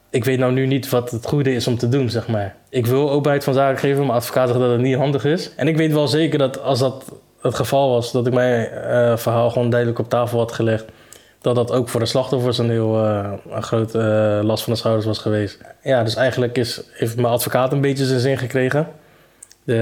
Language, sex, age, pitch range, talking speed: Dutch, male, 20-39, 115-125 Hz, 240 wpm